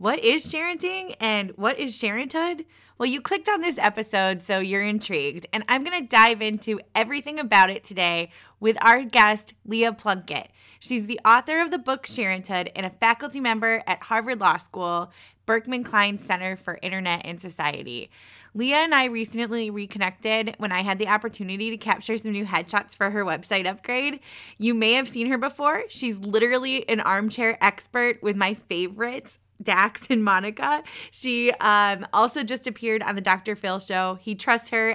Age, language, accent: 20-39, English, American